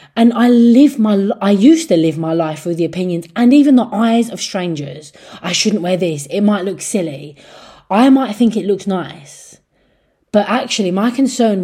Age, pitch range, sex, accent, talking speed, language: 20-39, 160-230 Hz, female, British, 190 wpm, English